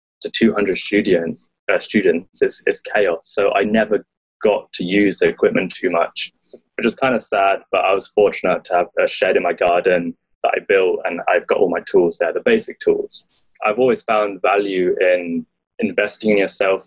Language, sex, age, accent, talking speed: English, male, 20-39, British, 195 wpm